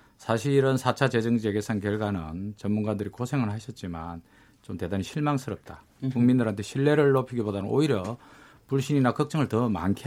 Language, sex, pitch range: Korean, male, 100-130 Hz